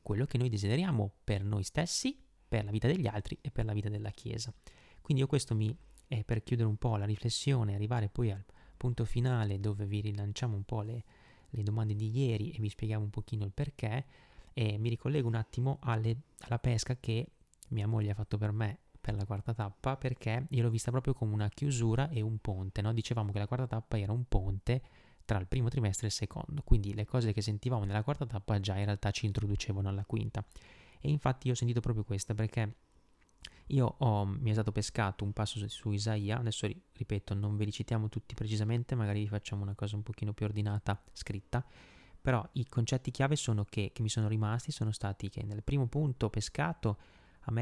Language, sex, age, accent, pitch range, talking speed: Italian, male, 20-39, native, 105-125 Hz, 210 wpm